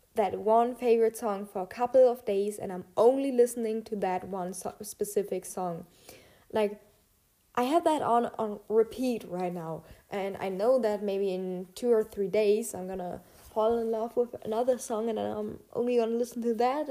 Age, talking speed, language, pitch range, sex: 10-29, 185 wpm, English, 200-235 Hz, female